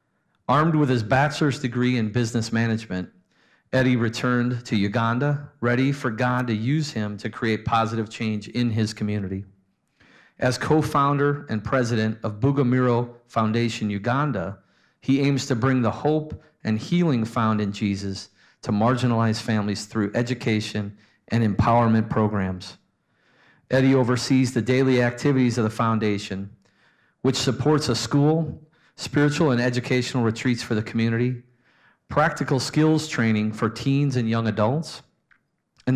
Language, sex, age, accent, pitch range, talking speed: English, male, 40-59, American, 110-130 Hz, 135 wpm